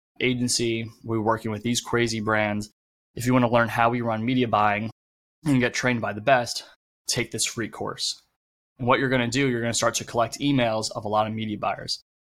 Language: English